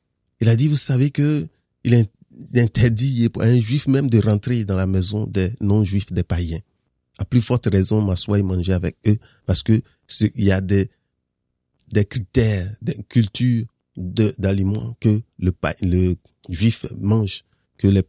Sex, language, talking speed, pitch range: male, French, 175 wpm, 95-110 Hz